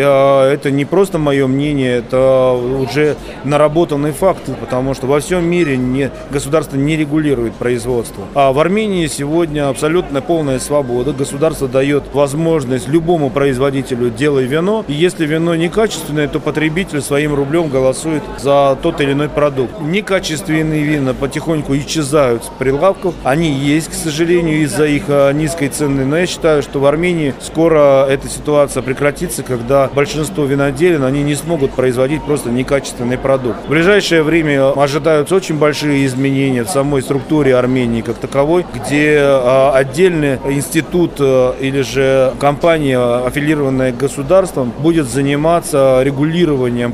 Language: Russian